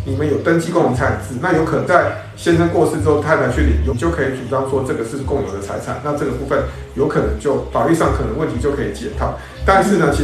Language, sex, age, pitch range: Chinese, male, 50-69, 130-170 Hz